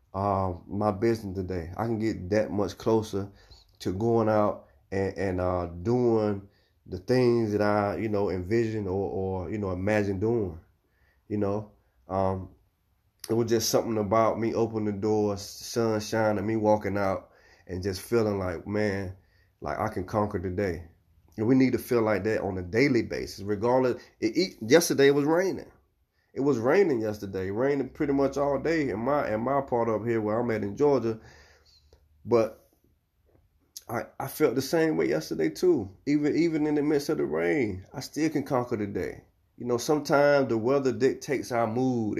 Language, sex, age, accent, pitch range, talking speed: English, male, 30-49, American, 95-120 Hz, 180 wpm